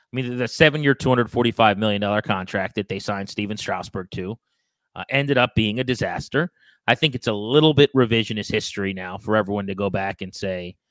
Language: English